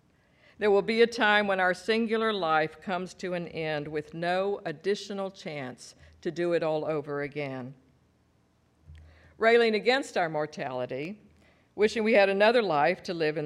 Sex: female